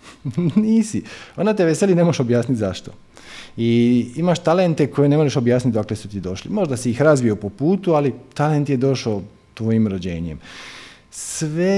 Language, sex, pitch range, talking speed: Croatian, male, 110-145 Hz, 165 wpm